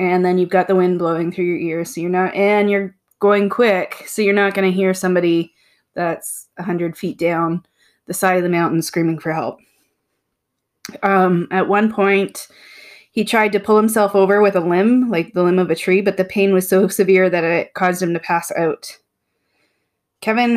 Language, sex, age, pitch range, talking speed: English, female, 20-39, 180-205 Hz, 200 wpm